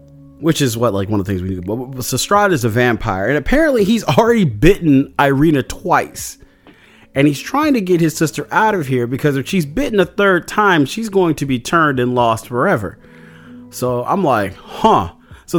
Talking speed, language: 210 wpm, English